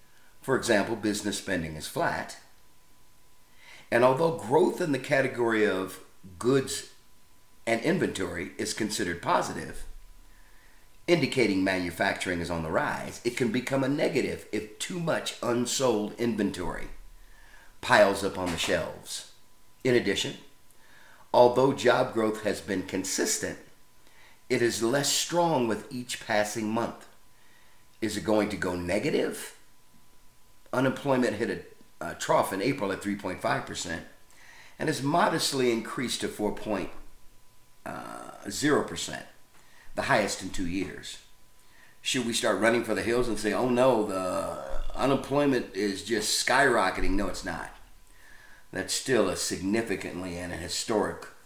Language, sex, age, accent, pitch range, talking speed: English, male, 50-69, American, 95-125 Hz, 125 wpm